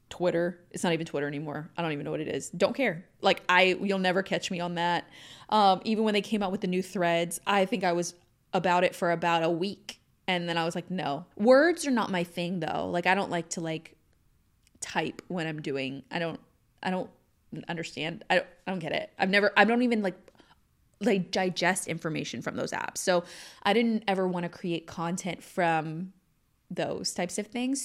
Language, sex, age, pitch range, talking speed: English, female, 20-39, 175-220 Hz, 220 wpm